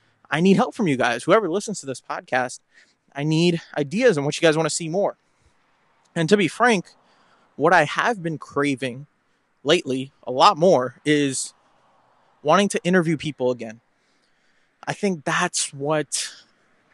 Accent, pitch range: American, 125-160 Hz